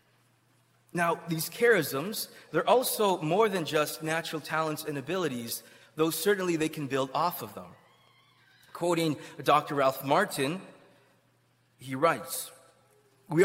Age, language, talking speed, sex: 20-39, English, 120 wpm, male